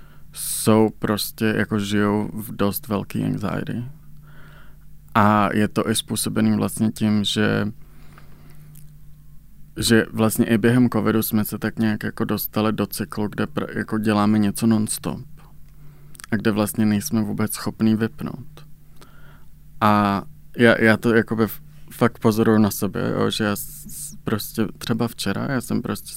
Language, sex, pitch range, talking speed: Czech, male, 105-125 Hz, 140 wpm